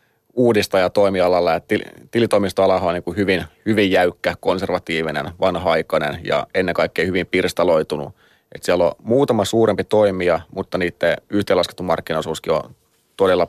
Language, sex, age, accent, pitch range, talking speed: Finnish, male, 30-49, native, 90-100 Hz, 125 wpm